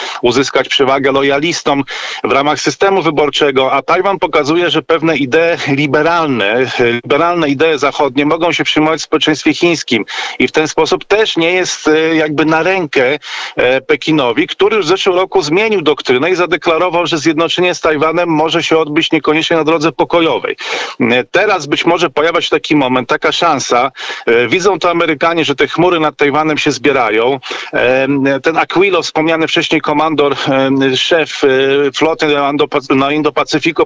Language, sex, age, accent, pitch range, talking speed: Polish, male, 40-59, native, 140-165 Hz, 145 wpm